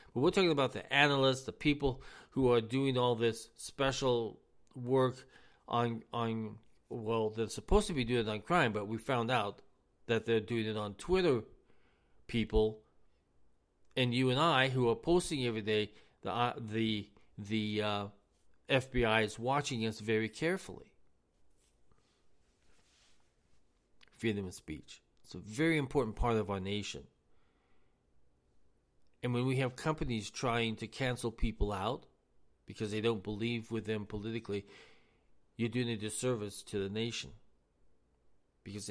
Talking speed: 140 wpm